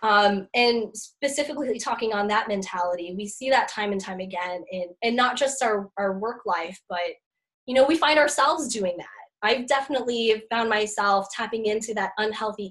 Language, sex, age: English, female, 10-29